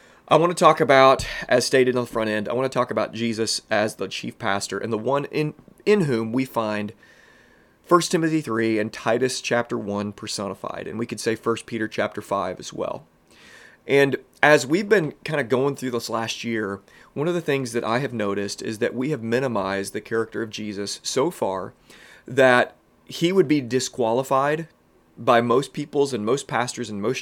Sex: male